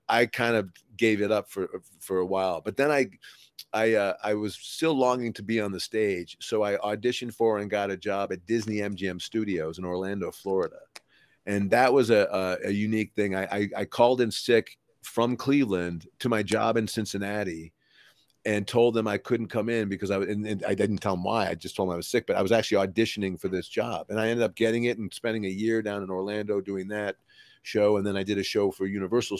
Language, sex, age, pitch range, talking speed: English, male, 40-59, 95-115 Hz, 235 wpm